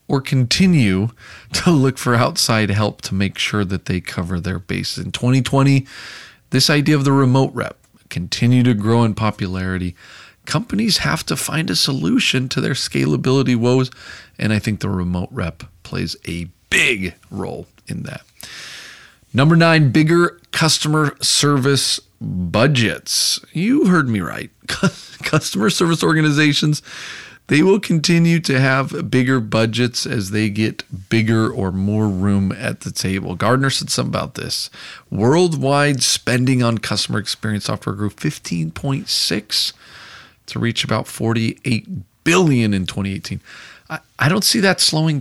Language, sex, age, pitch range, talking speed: English, male, 40-59, 100-140 Hz, 140 wpm